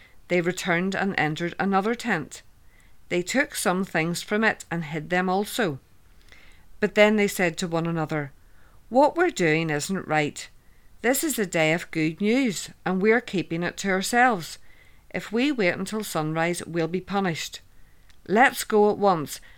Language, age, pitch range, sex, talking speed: English, 50-69, 160-210 Hz, female, 160 wpm